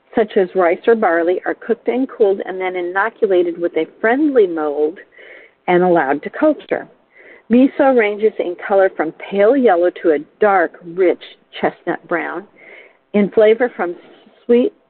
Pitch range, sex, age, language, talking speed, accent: 175-230 Hz, female, 50-69, English, 150 wpm, American